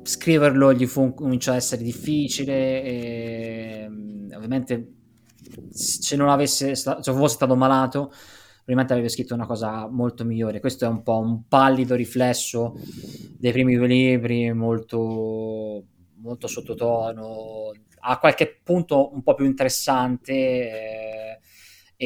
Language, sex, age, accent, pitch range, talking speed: Italian, male, 20-39, native, 115-130 Hz, 120 wpm